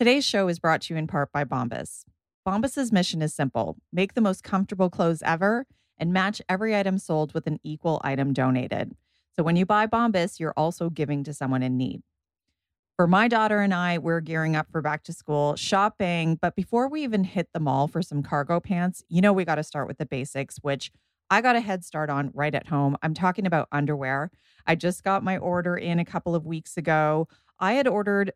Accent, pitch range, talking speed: American, 145-190 Hz, 220 wpm